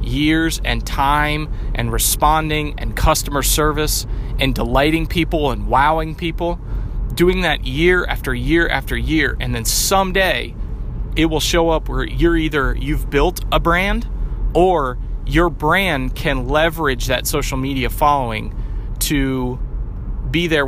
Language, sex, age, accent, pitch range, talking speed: English, male, 30-49, American, 115-150 Hz, 135 wpm